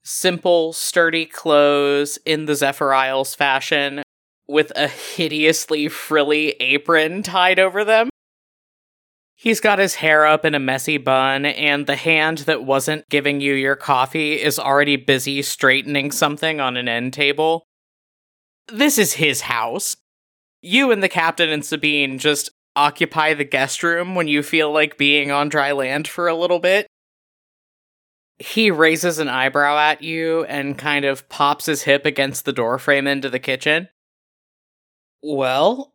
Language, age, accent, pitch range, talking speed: English, 20-39, American, 140-170 Hz, 150 wpm